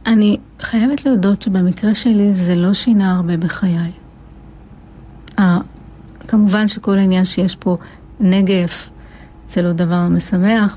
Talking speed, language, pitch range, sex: 110 wpm, Hebrew, 175-205 Hz, female